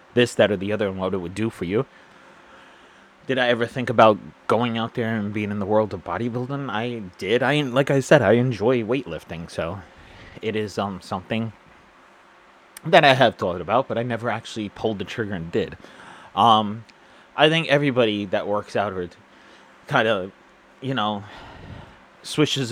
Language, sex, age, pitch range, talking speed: English, male, 30-49, 105-130 Hz, 180 wpm